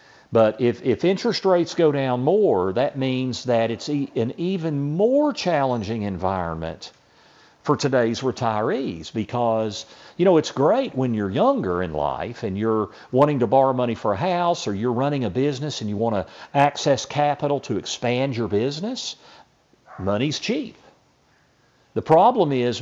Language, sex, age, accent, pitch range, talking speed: English, male, 50-69, American, 115-155 Hz, 160 wpm